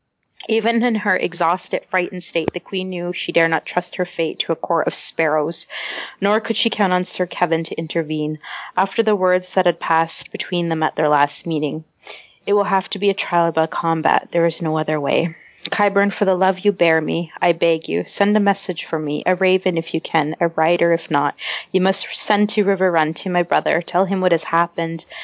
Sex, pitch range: female, 165-195 Hz